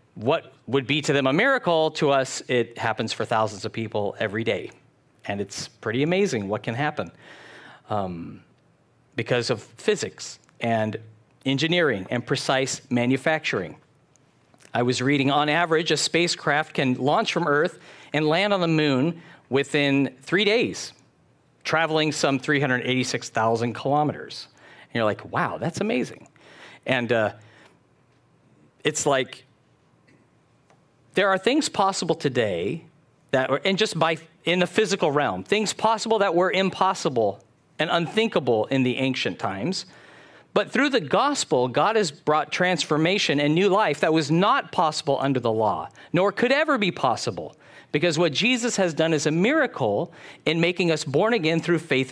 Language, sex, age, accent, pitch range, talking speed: English, male, 50-69, American, 130-185 Hz, 150 wpm